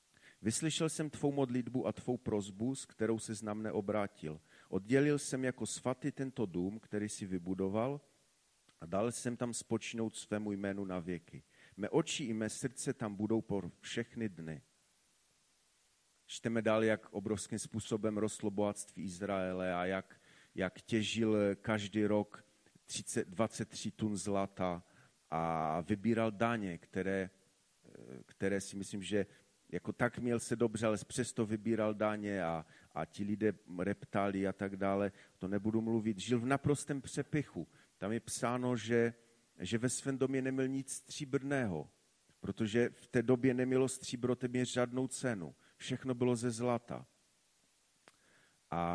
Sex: male